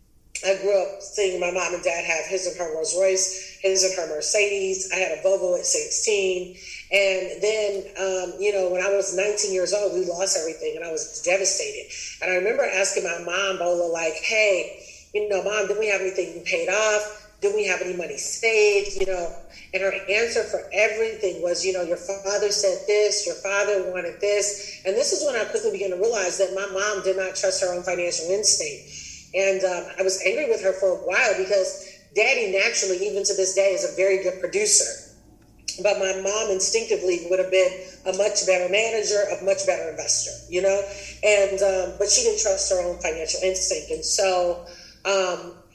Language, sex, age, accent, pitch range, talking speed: English, female, 40-59, American, 185-205 Hz, 205 wpm